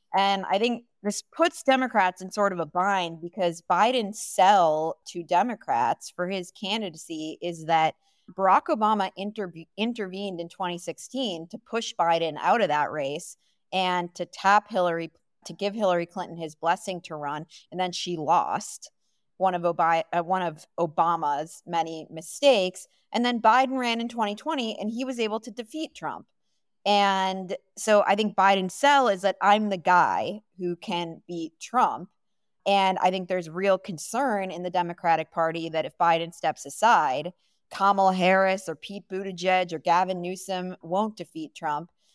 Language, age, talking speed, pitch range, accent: English, 30-49, 155 wpm, 175-210 Hz, American